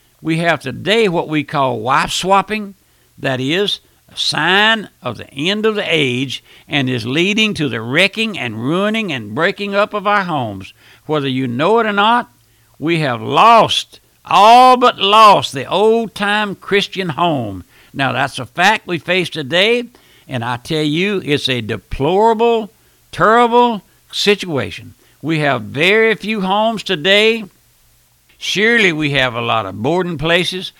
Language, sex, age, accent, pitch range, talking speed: English, male, 60-79, American, 125-200 Hz, 150 wpm